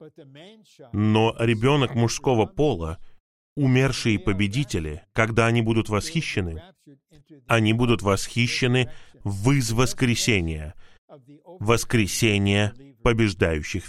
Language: Russian